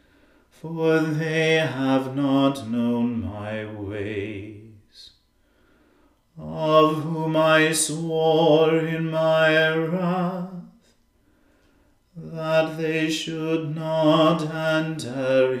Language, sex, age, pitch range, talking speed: English, male, 40-59, 120-160 Hz, 75 wpm